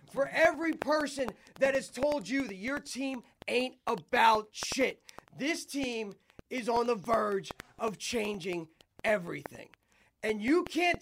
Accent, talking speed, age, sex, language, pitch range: American, 135 wpm, 30-49, male, English, 235-295 Hz